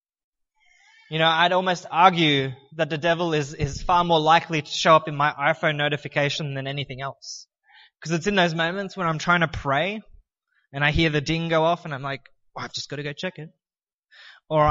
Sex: male